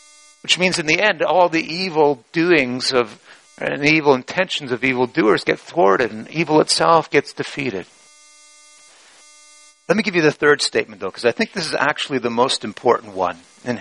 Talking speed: 185 wpm